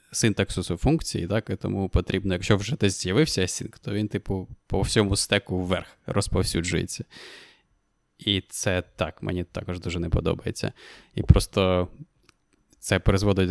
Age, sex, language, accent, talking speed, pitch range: 20-39, male, Ukrainian, native, 135 wpm, 90-105 Hz